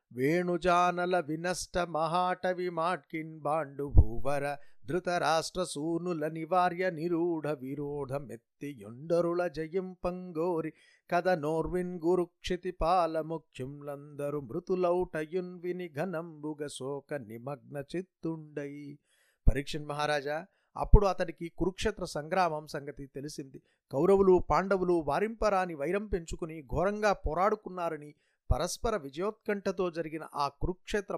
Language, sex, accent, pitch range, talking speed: Telugu, male, native, 145-180 Hz, 45 wpm